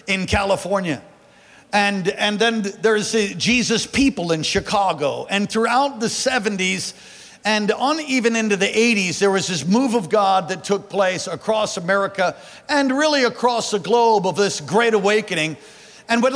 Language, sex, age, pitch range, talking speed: English, male, 50-69, 195-260 Hz, 160 wpm